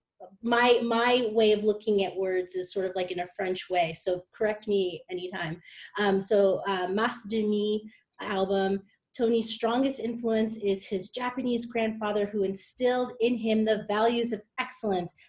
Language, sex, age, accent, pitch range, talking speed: English, female, 30-49, American, 205-245 Hz, 160 wpm